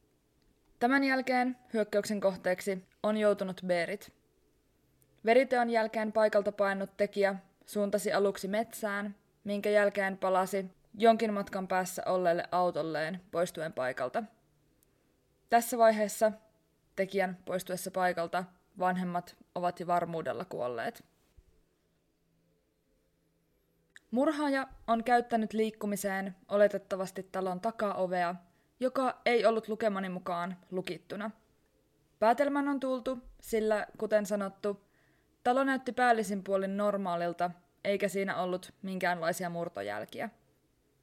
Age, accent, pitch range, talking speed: 20-39, native, 185-225 Hz, 95 wpm